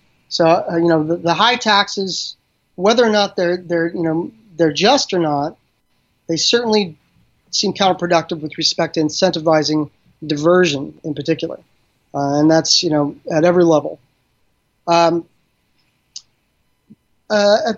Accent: American